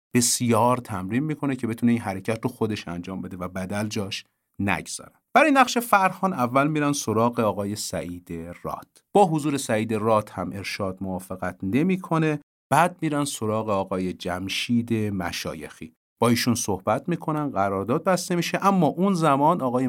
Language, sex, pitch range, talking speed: Persian, male, 100-140 Hz, 150 wpm